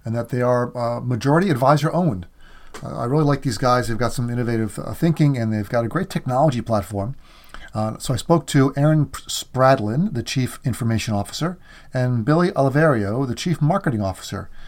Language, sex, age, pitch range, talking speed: English, male, 40-59, 115-145 Hz, 185 wpm